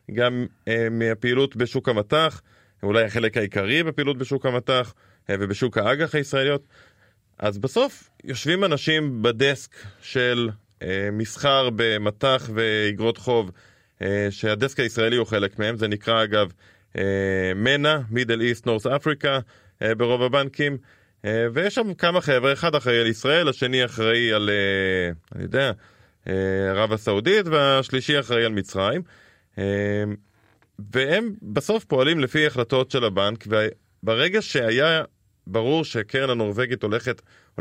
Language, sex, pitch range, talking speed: Hebrew, male, 105-140 Hz, 125 wpm